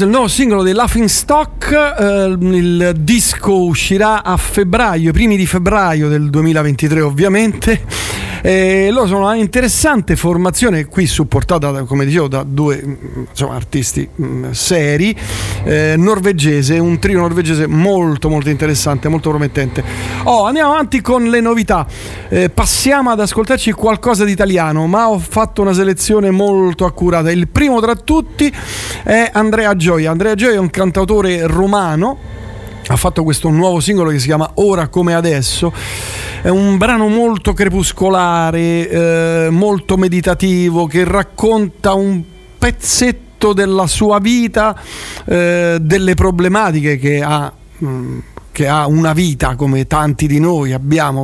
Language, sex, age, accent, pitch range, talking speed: Italian, male, 40-59, native, 155-200 Hz, 135 wpm